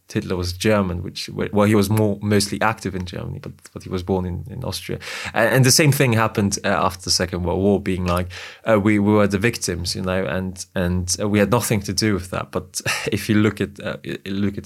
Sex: male